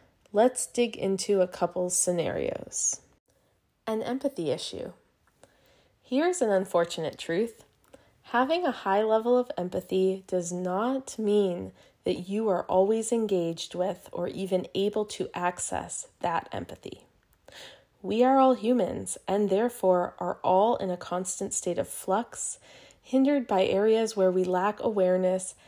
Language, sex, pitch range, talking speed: English, female, 185-235 Hz, 130 wpm